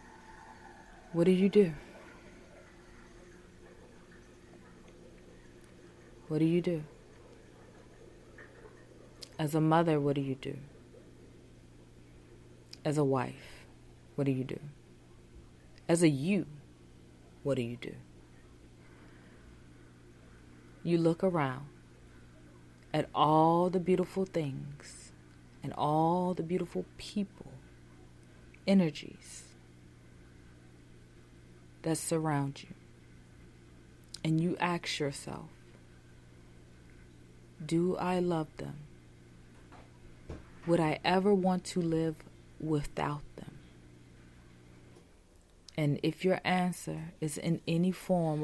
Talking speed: 85 wpm